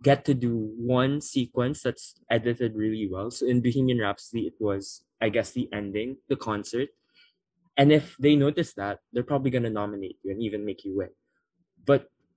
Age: 20-39